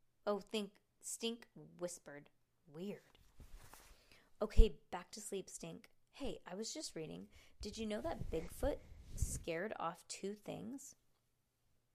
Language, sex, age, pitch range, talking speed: English, female, 20-39, 180-240 Hz, 120 wpm